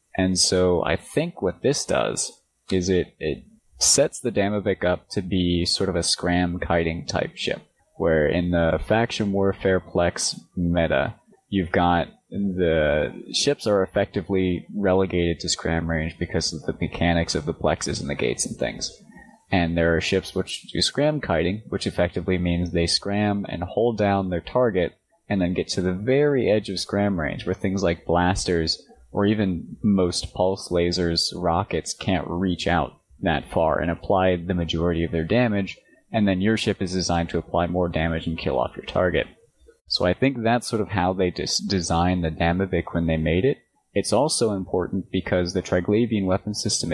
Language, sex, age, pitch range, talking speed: English, male, 20-39, 85-100 Hz, 180 wpm